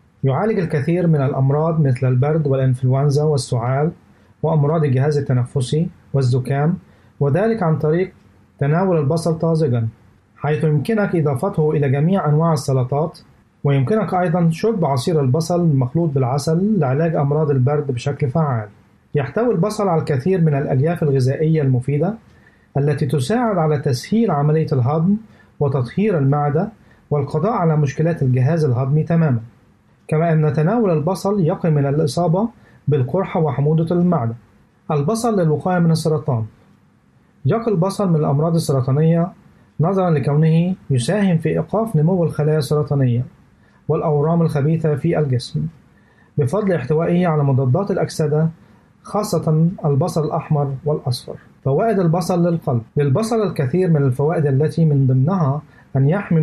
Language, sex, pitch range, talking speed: Arabic, male, 140-170 Hz, 120 wpm